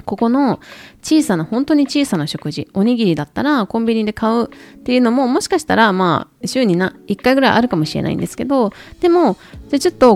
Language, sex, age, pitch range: Japanese, female, 20-39, 165-245 Hz